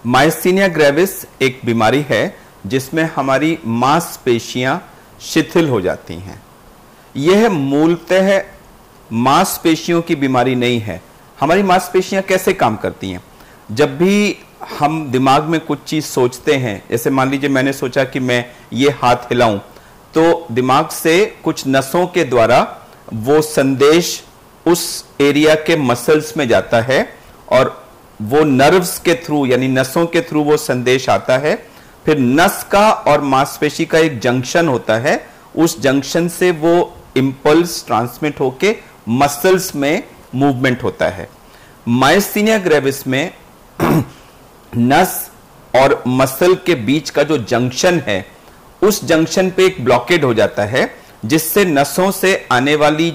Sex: male